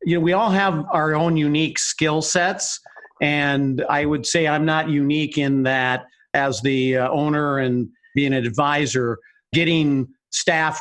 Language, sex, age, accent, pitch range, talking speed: English, male, 50-69, American, 135-165 Hz, 155 wpm